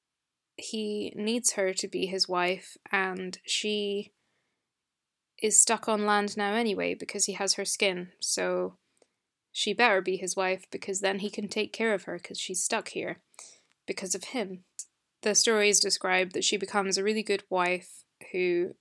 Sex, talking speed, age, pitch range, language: female, 165 wpm, 20-39, 185-210 Hz, English